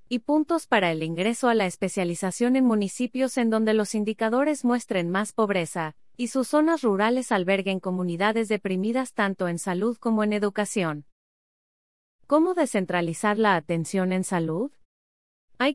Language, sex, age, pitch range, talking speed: Spanish, female, 30-49, 180-235 Hz, 140 wpm